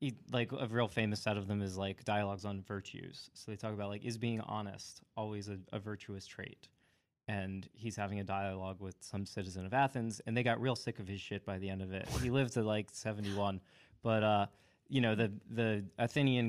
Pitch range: 100-120 Hz